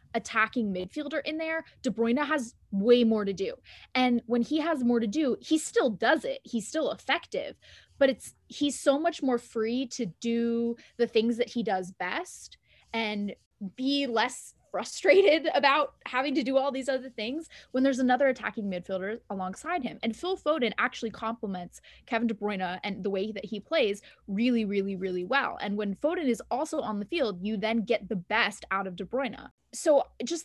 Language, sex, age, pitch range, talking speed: English, female, 20-39, 210-275 Hz, 190 wpm